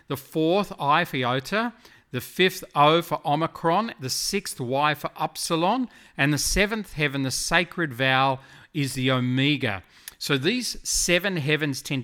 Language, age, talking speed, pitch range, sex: English, 40-59, 150 wpm, 135-175 Hz, male